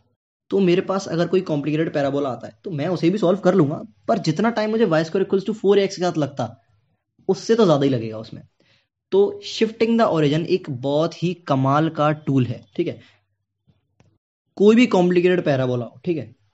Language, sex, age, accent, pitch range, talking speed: Hindi, male, 20-39, native, 125-170 Hz, 120 wpm